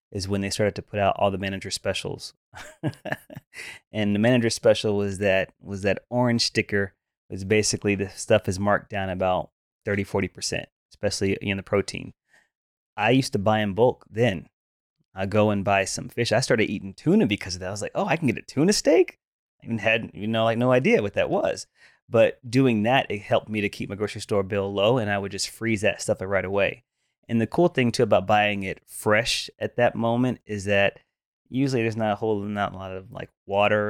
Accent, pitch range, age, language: American, 100-120 Hz, 20-39, English